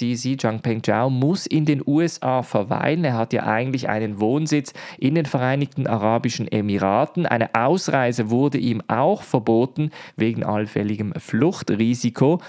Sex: male